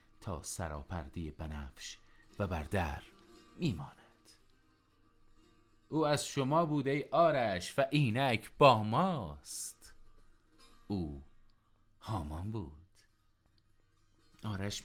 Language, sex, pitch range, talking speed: Persian, male, 85-115 Hz, 85 wpm